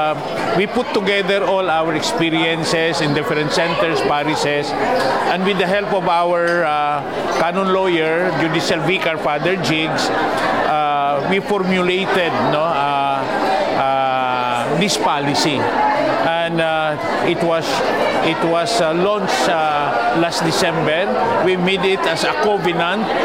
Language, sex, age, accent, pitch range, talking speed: Filipino, male, 50-69, native, 155-185 Hz, 125 wpm